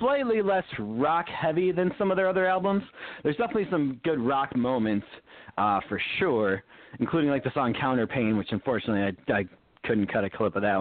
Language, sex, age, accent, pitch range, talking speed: English, male, 30-49, American, 115-170 Hz, 185 wpm